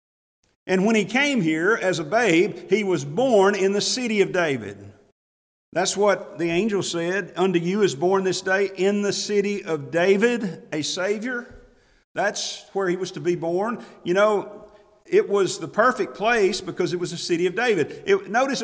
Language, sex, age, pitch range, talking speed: English, male, 40-59, 165-210 Hz, 180 wpm